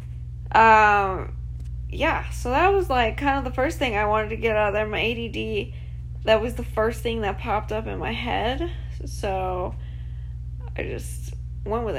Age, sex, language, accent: 20-39, female, English, American